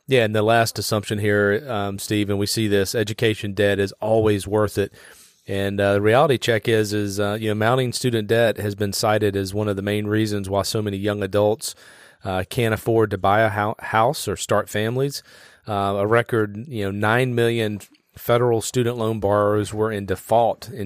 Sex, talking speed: male, 200 wpm